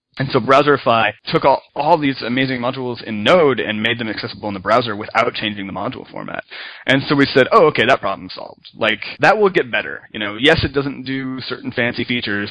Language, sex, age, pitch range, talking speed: English, male, 30-49, 100-125 Hz, 220 wpm